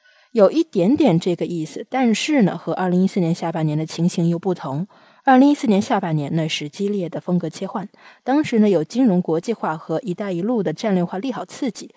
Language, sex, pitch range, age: Chinese, female, 175-230 Hz, 20-39